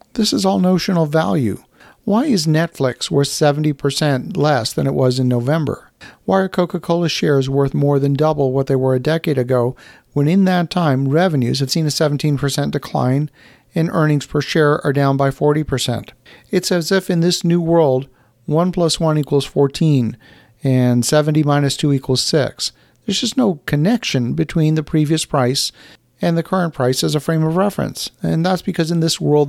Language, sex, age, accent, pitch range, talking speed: English, male, 50-69, American, 135-165 Hz, 180 wpm